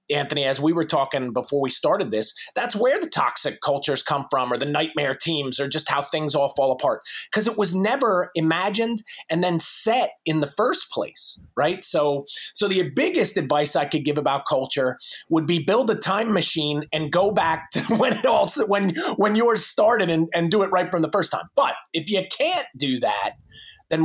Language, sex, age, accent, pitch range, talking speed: English, male, 30-49, American, 140-185 Hz, 205 wpm